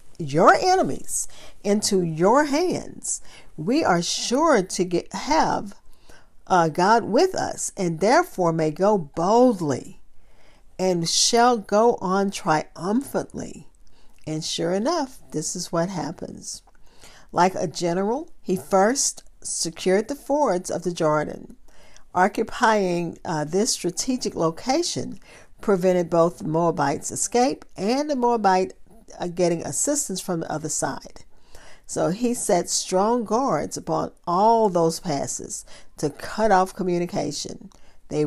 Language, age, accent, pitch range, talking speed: English, 50-69, American, 165-225 Hz, 115 wpm